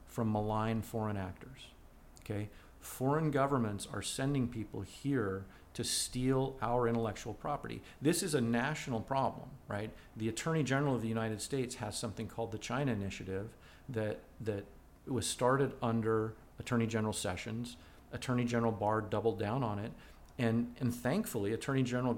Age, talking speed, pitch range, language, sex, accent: 40-59, 150 wpm, 110-135 Hz, English, male, American